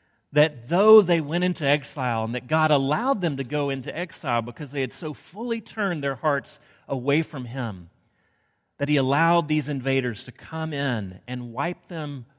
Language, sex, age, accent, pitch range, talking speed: English, male, 40-59, American, 120-170 Hz, 180 wpm